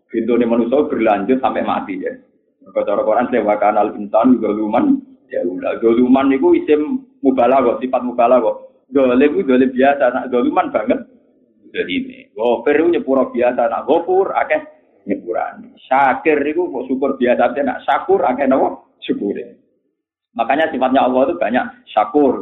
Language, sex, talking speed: Malay, male, 150 wpm